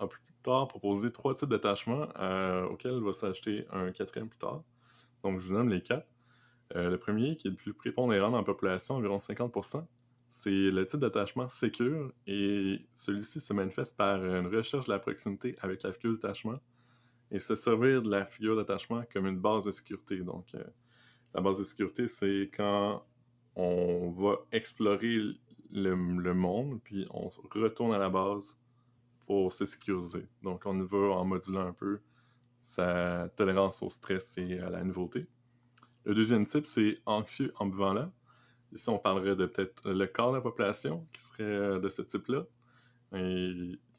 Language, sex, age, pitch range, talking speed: French, male, 20-39, 95-120 Hz, 180 wpm